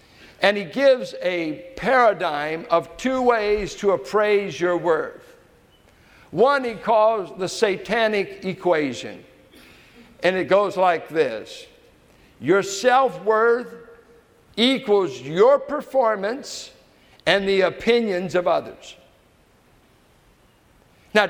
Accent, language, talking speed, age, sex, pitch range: American, English, 95 wpm, 60-79, male, 190-235 Hz